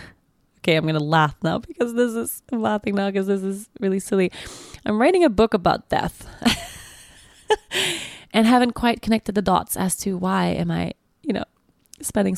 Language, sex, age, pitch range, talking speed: English, female, 20-39, 160-200 Hz, 180 wpm